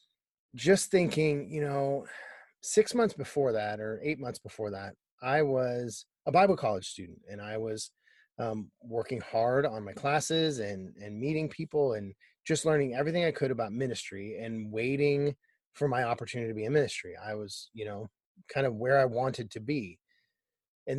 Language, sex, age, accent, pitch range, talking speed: English, male, 30-49, American, 115-145 Hz, 175 wpm